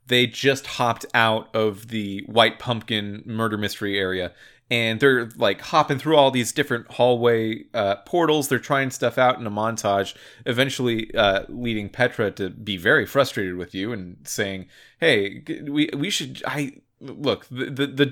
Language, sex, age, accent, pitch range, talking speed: English, male, 30-49, American, 105-135 Hz, 165 wpm